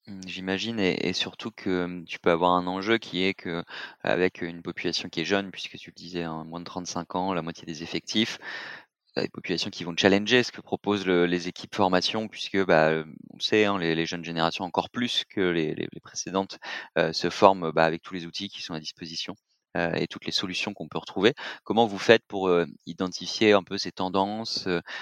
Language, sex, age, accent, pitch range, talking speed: French, male, 30-49, French, 85-100 Hz, 215 wpm